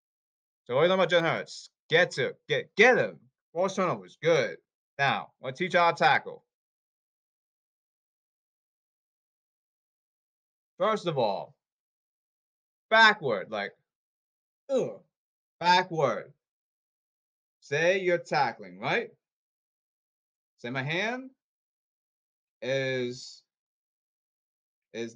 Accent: American